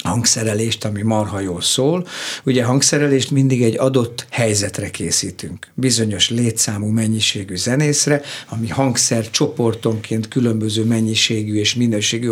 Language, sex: Hungarian, male